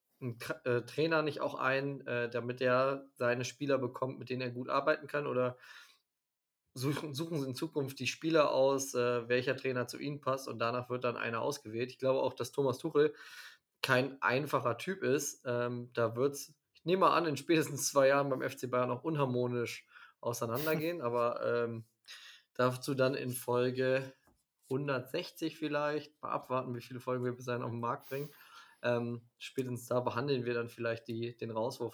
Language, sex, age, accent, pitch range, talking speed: German, male, 20-39, German, 120-145 Hz, 175 wpm